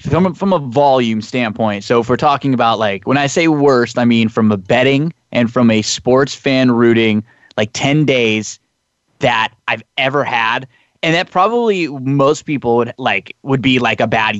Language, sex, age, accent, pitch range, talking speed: English, male, 20-39, American, 115-145 Hz, 190 wpm